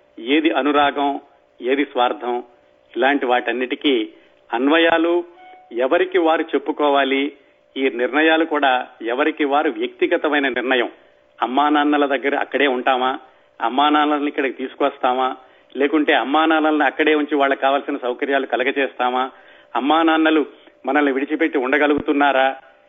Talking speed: 105 wpm